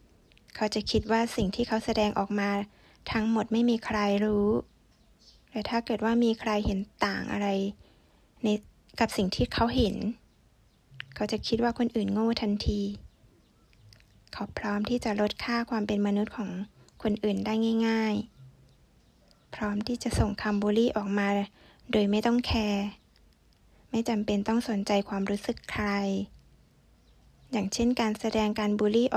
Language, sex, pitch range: Thai, female, 205-235 Hz